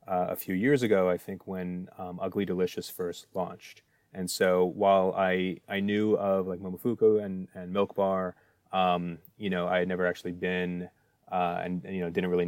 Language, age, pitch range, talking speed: English, 30-49, 90-100 Hz, 195 wpm